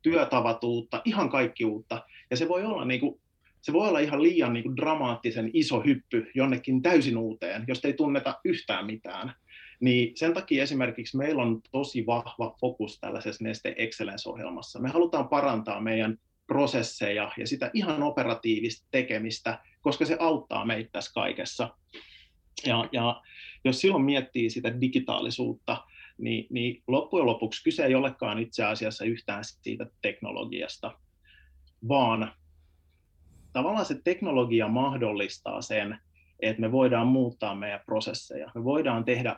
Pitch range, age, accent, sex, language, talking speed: 110-135 Hz, 30-49, native, male, Finnish, 135 wpm